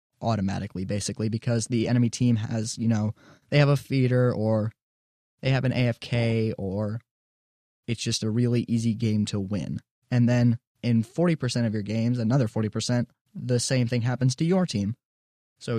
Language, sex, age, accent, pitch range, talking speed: English, male, 20-39, American, 110-125 Hz, 165 wpm